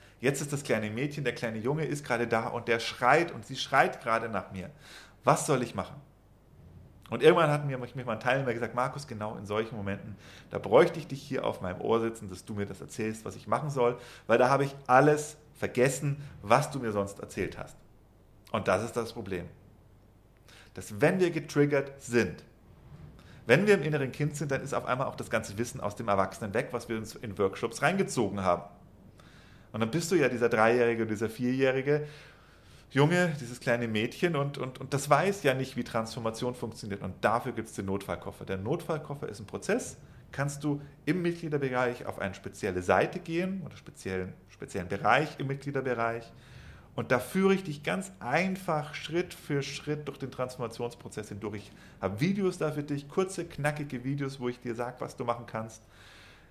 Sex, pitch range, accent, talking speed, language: male, 110-145 Hz, German, 195 wpm, German